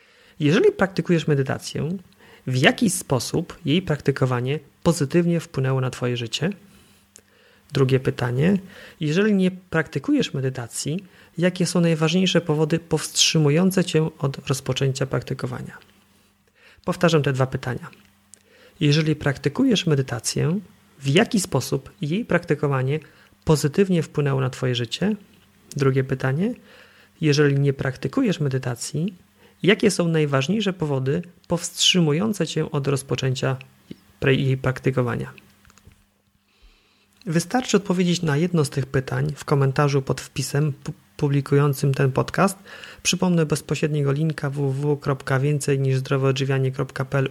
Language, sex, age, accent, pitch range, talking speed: Polish, male, 40-59, native, 135-170 Hz, 100 wpm